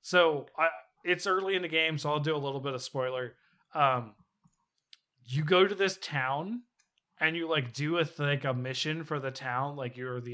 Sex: male